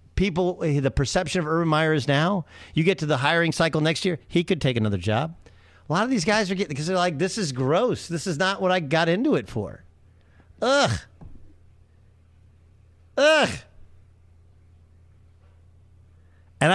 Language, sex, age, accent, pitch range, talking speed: English, male, 50-69, American, 110-185 Hz, 165 wpm